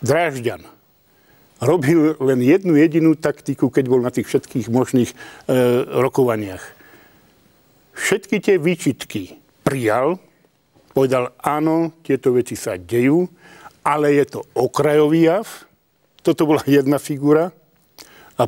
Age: 50-69